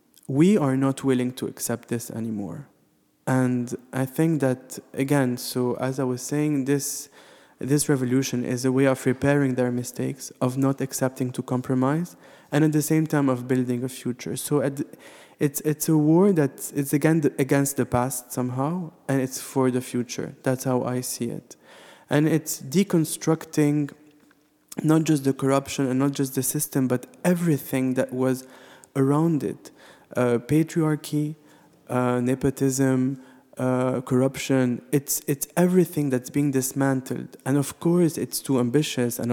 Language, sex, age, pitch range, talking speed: English, male, 20-39, 125-145 Hz, 155 wpm